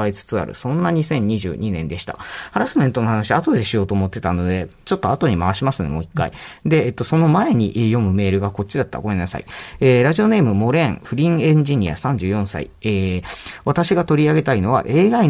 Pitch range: 115-160 Hz